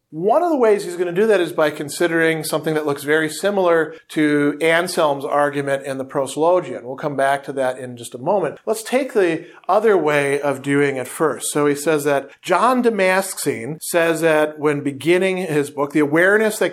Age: 40-59